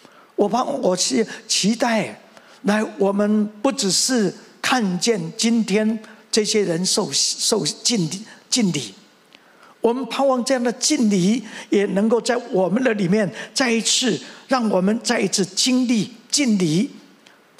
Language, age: Chinese, 50-69